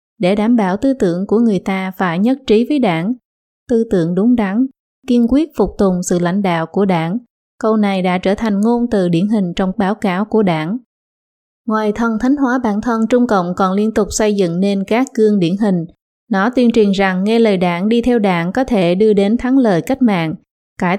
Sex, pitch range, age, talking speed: female, 190-225 Hz, 20-39, 220 wpm